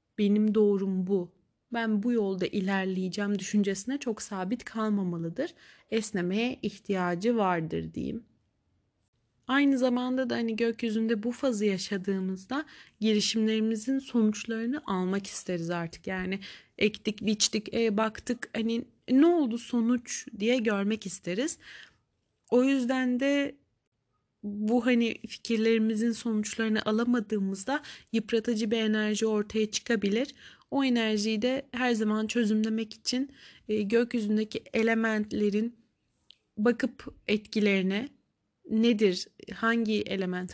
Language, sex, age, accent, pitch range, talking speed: Turkish, female, 30-49, native, 200-235 Hz, 100 wpm